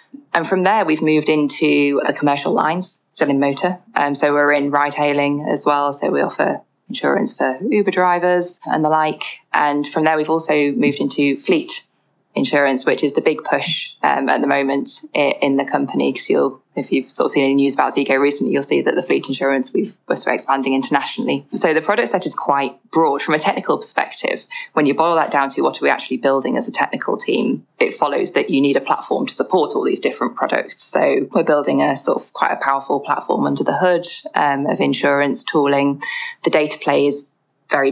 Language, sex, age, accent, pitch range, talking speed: English, female, 20-39, British, 140-165 Hz, 215 wpm